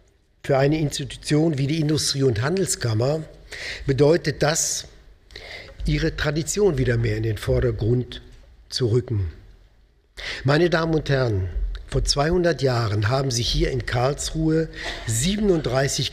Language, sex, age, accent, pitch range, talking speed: German, male, 50-69, German, 115-155 Hz, 120 wpm